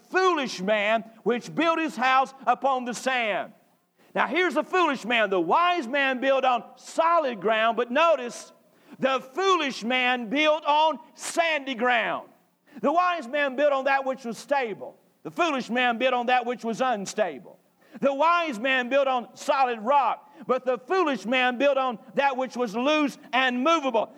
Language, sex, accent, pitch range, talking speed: English, male, American, 235-290 Hz, 165 wpm